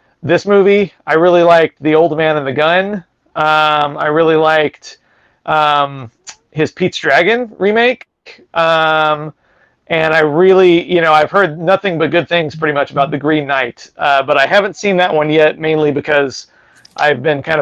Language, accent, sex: English, American, male